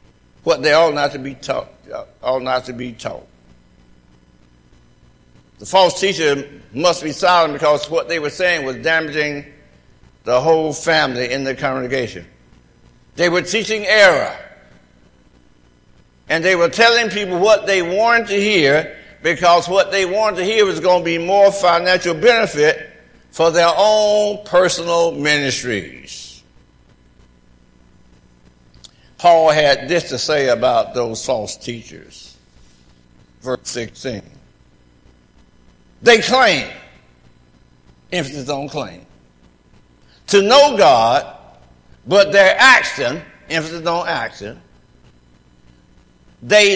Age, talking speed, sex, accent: 60-79, 110 wpm, male, American